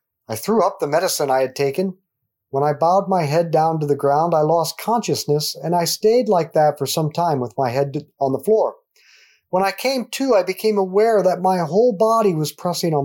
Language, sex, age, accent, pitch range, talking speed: English, male, 50-69, American, 130-185 Hz, 220 wpm